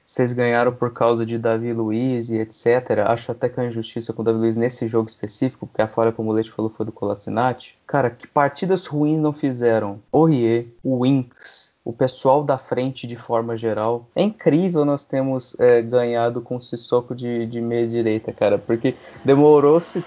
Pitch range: 115-135 Hz